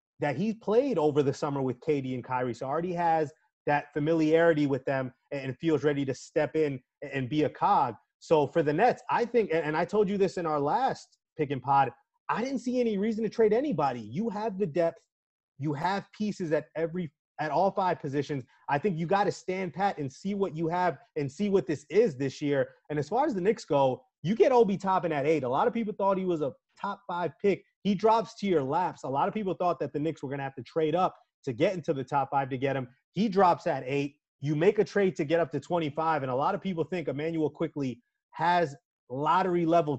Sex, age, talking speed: male, 30-49, 240 wpm